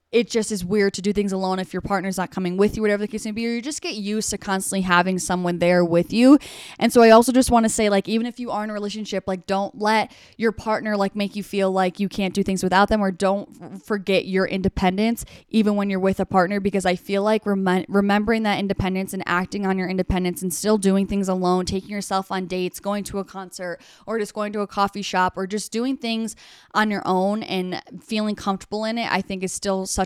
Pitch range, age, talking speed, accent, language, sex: 185-210 Hz, 10-29, 250 wpm, American, English, female